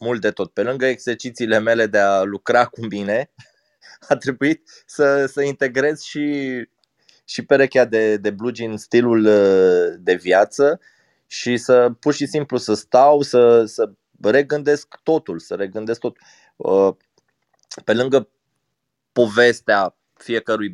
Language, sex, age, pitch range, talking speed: Romanian, male, 20-39, 110-135 Hz, 130 wpm